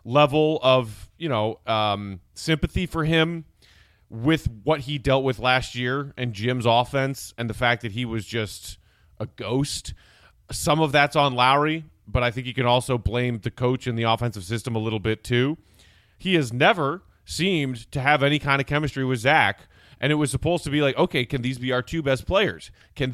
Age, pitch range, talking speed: 30-49, 120-170 Hz, 200 wpm